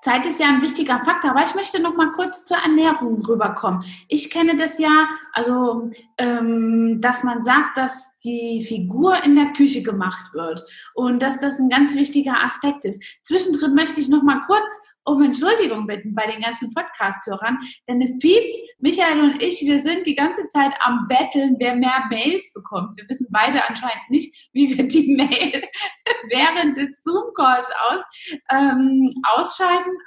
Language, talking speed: German, 165 wpm